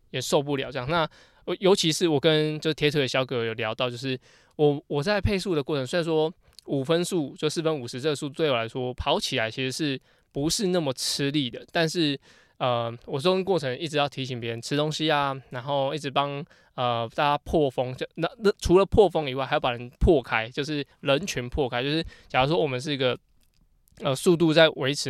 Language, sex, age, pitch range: Chinese, male, 20-39, 130-160 Hz